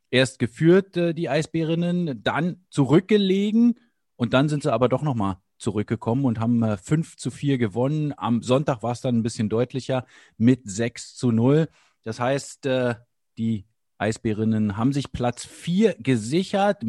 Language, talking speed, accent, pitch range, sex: English, 145 wpm, German, 120-170 Hz, male